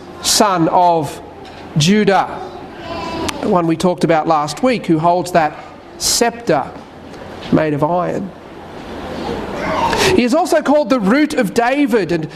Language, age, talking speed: English, 40-59, 125 wpm